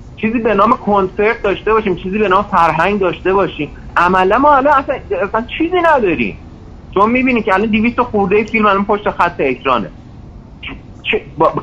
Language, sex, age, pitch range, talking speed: Persian, male, 30-49, 170-230 Hz, 160 wpm